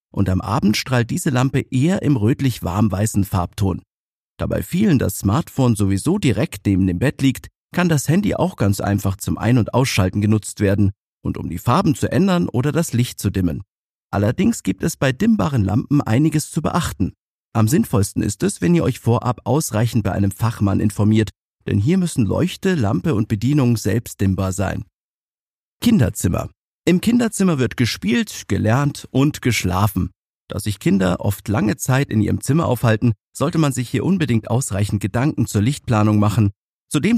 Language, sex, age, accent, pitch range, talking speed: German, male, 50-69, German, 100-145 Hz, 170 wpm